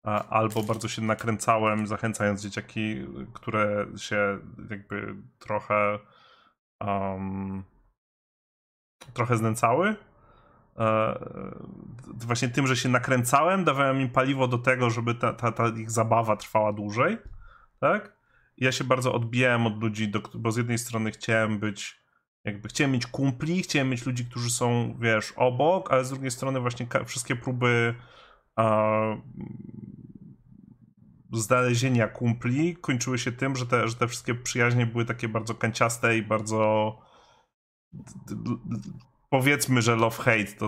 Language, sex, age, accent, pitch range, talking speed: Polish, male, 30-49, native, 110-130 Hz, 125 wpm